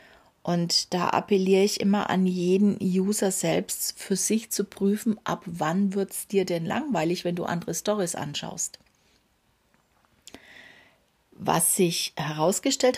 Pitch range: 175-215 Hz